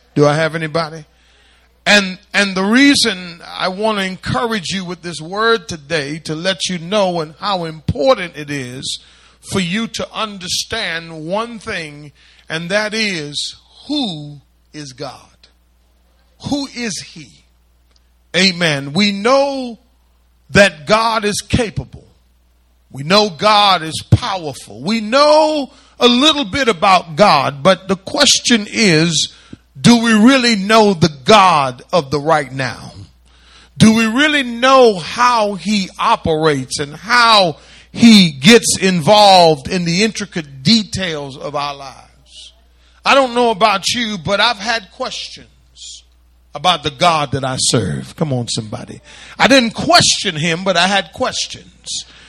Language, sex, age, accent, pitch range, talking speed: English, male, 40-59, American, 145-225 Hz, 135 wpm